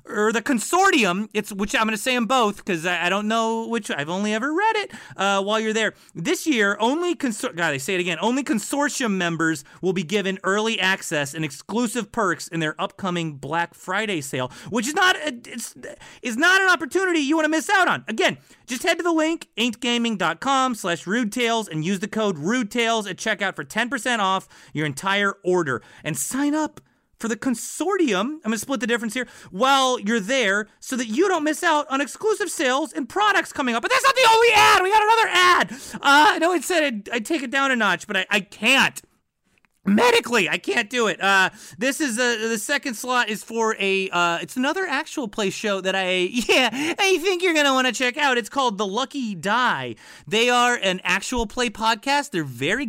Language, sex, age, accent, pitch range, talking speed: English, male, 30-49, American, 185-270 Hz, 210 wpm